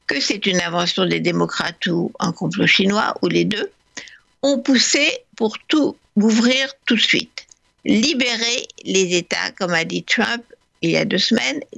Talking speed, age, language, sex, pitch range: 170 wpm, 60-79, French, female, 195-265 Hz